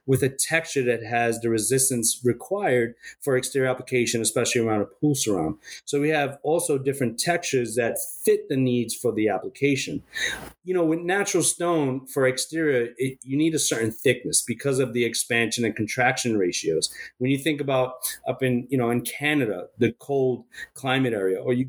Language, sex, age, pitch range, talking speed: English, male, 40-59, 120-145 Hz, 180 wpm